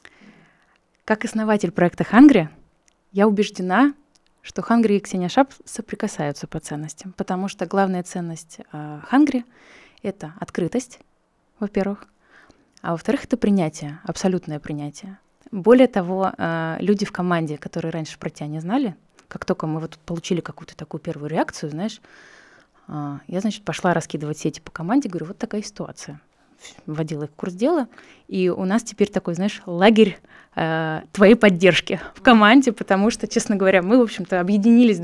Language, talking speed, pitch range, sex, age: Russian, 150 wpm, 170-225 Hz, female, 20-39